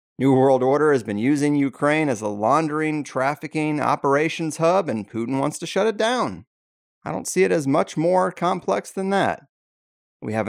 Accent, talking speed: American, 185 wpm